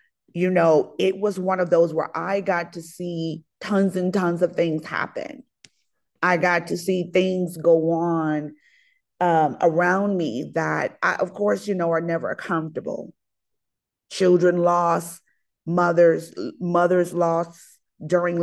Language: English